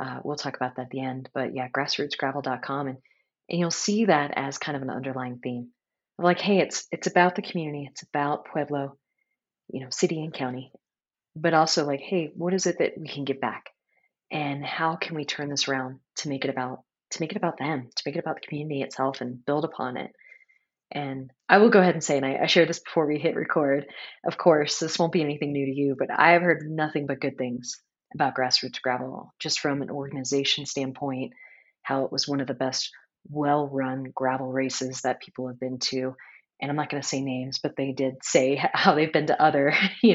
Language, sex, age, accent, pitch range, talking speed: English, female, 30-49, American, 135-165 Hz, 225 wpm